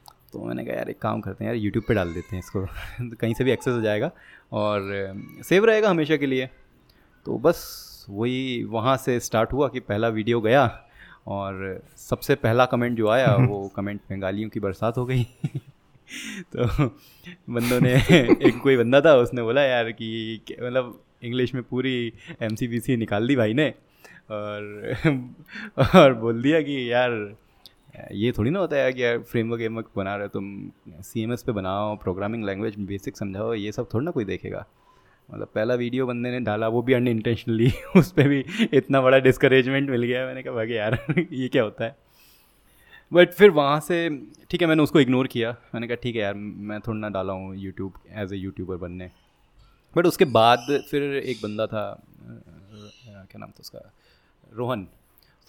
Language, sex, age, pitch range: Hindi, male, 20-39, 105-130 Hz